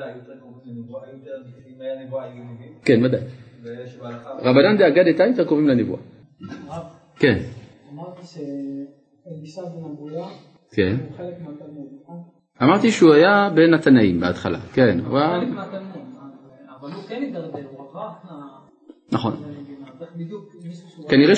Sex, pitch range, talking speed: male, 120-165 Hz, 75 wpm